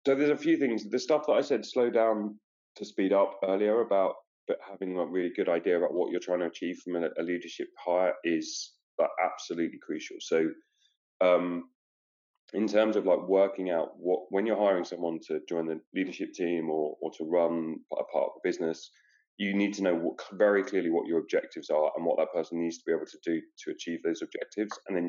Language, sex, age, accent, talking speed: English, male, 30-49, British, 210 wpm